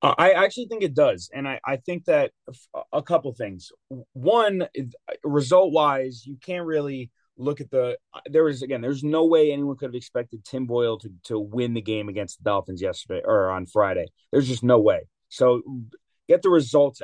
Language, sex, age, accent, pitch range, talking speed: English, male, 30-49, American, 120-150 Hz, 195 wpm